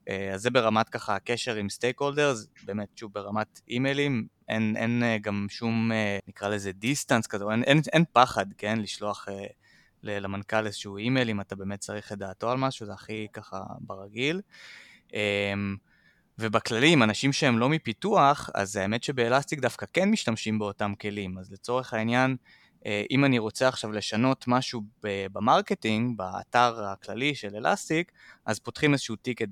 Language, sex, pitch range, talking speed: Hebrew, male, 100-125 Hz, 150 wpm